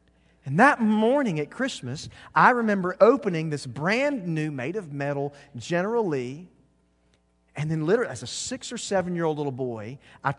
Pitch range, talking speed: 145-240 Hz, 170 wpm